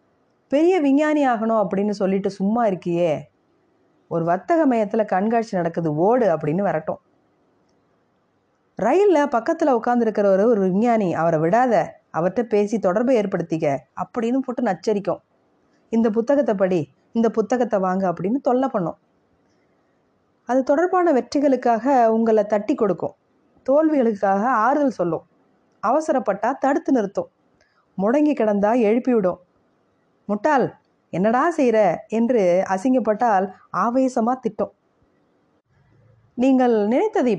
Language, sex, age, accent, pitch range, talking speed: Tamil, female, 20-39, native, 175-255 Hz, 95 wpm